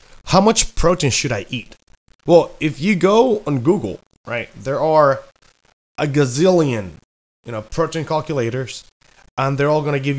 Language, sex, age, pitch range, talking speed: English, male, 20-39, 115-160 Hz, 160 wpm